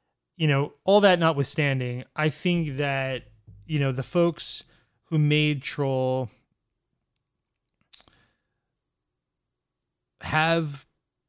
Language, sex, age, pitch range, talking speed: English, male, 30-49, 125-155 Hz, 85 wpm